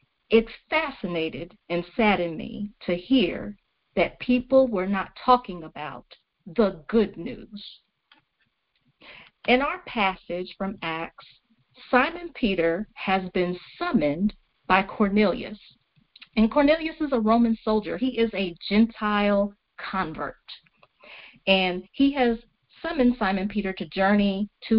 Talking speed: 115 wpm